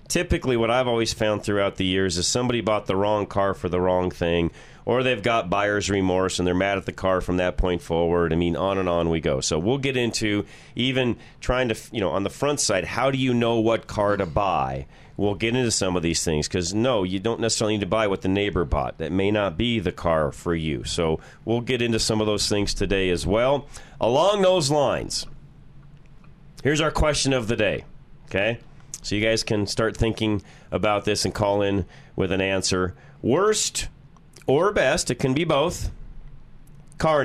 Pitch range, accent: 95-140 Hz, American